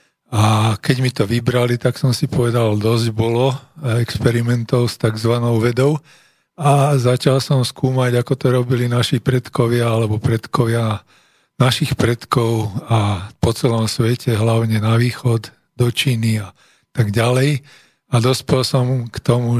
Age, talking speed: 40-59, 140 wpm